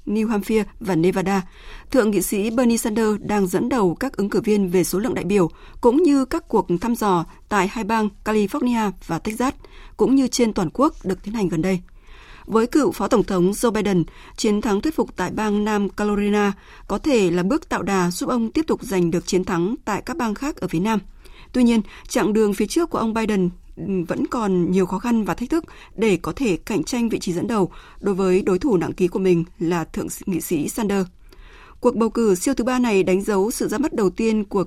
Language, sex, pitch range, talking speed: Vietnamese, female, 185-235 Hz, 230 wpm